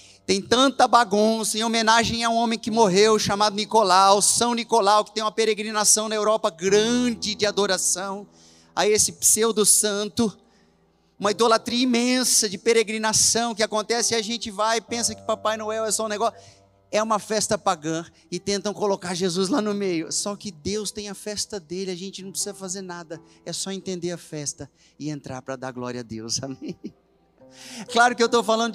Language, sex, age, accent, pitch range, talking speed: Portuguese, male, 30-49, Brazilian, 195-230 Hz, 185 wpm